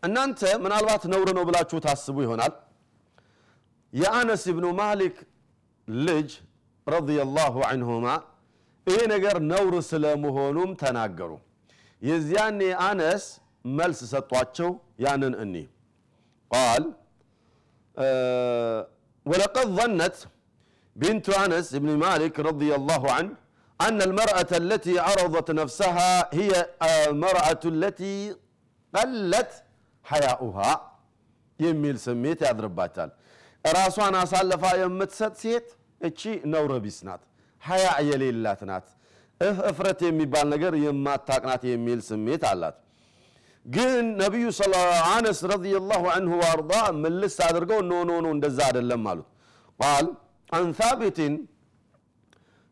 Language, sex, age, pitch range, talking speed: Amharic, male, 50-69, 140-190 Hz, 95 wpm